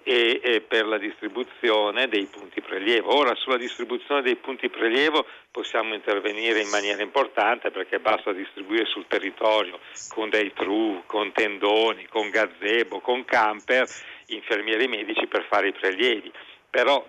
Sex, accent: male, native